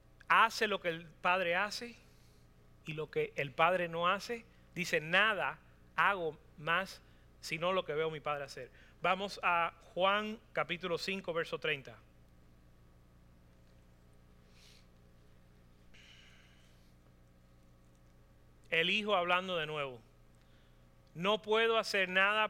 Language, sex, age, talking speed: Spanish, male, 30-49, 105 wpm